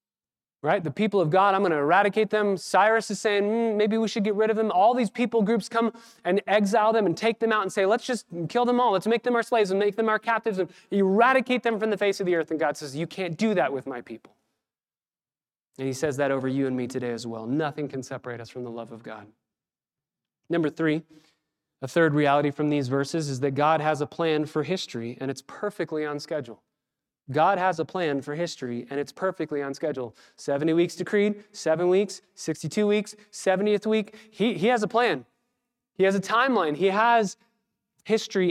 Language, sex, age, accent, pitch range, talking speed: English, male, 30-49, American, 155-215 Hz, 220 wpm